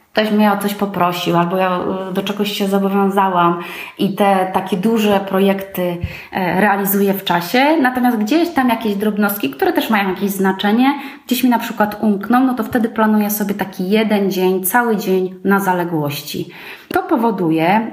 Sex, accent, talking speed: female, native, 160 wpm